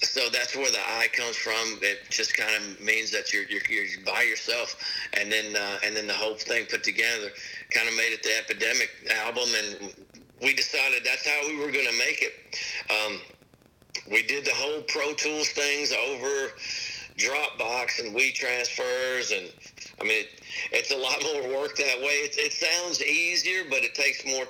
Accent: American